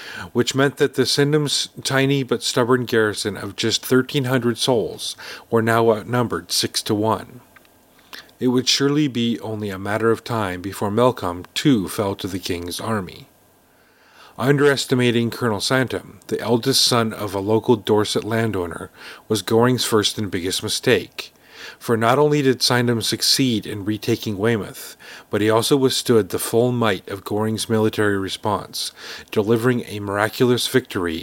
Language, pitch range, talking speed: English, 105-125 Hz, 150 wpm